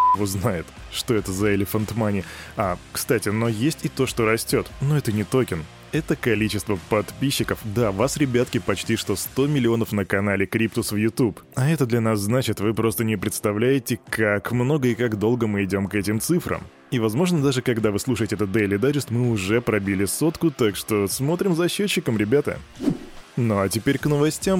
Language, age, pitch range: Russian, 20-39, 105-135 Hz